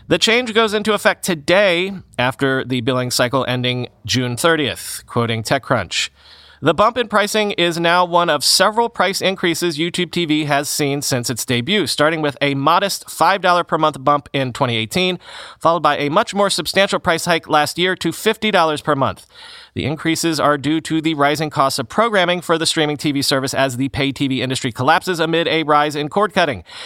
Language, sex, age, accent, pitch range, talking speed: English, male, 30-49, American, 140-180 Hz, 190 wpm